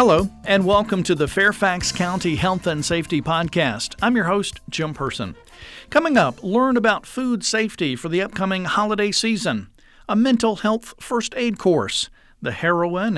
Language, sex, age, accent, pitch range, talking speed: English, male, 50-69, American, 155-215 Hz, 160 wpm